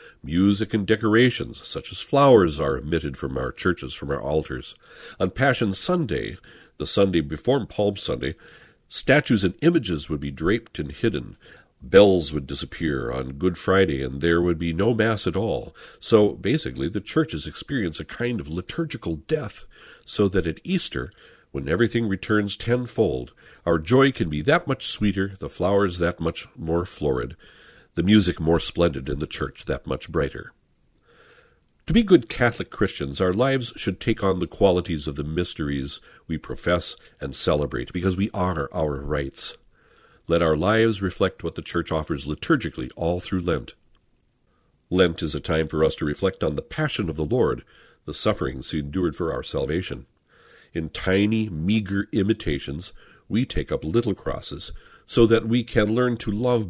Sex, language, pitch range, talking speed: male, English, 80-110 Hz, 165 wpm